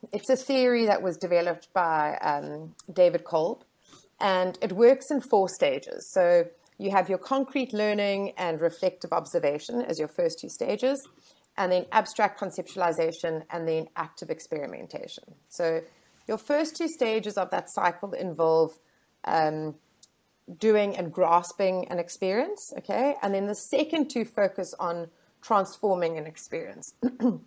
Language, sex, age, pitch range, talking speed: English, female, 30-49, 170-220 Hz, 140 wpm